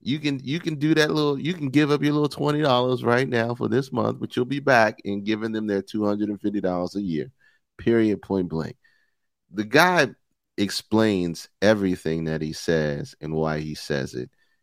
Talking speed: 185 wpm